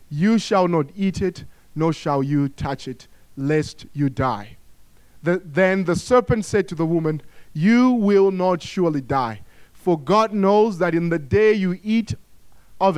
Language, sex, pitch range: English, male, 150-200 Hz